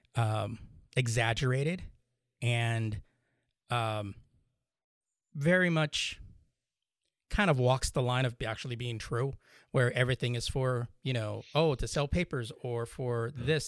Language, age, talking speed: English, 30-49, 125 wpm